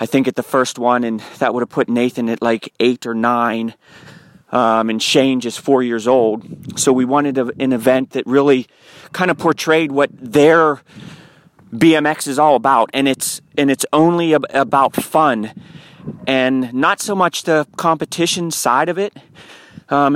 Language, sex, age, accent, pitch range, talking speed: English, male, 30-49, American, 130-160 Hz, 175 wpm